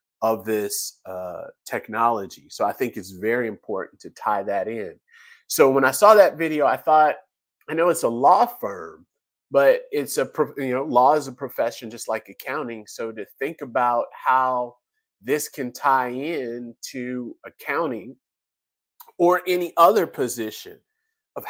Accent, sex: American, male